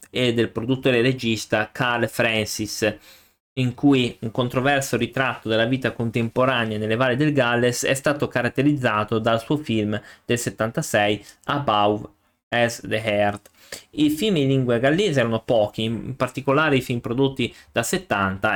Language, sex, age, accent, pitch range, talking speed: Italian, male, 20-39, native, 110-140 Hz, 145 wpm